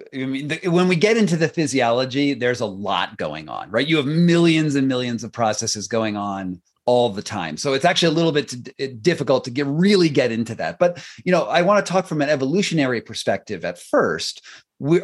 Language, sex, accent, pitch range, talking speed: English, male, American, 125-170 Hz, 210 wpm